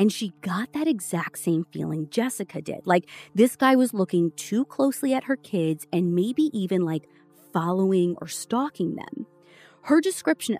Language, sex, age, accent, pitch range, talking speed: English, female, 30-49, American, 165-235 Hz, 165 wpm